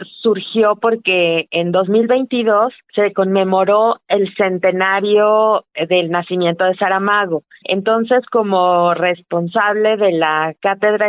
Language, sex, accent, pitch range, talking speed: Spanish, female, Mexican, 185-225 Hz, 95 wpm